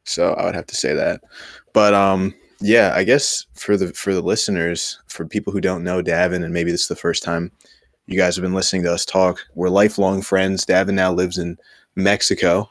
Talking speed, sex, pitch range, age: 215 wpm, male, 90-100 Hz, 20-39